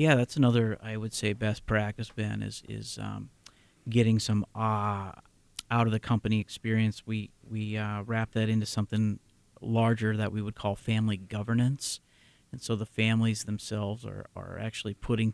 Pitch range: 105-115 Hz